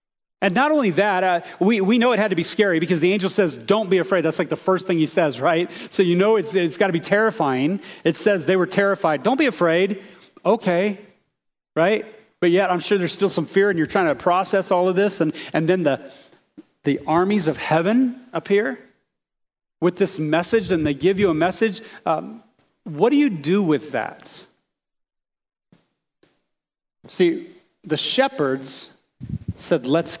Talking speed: 185 wpm